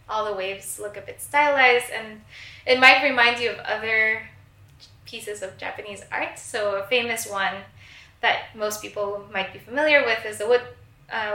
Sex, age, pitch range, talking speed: female, 10-29, 185-230 Hz, 175 wpm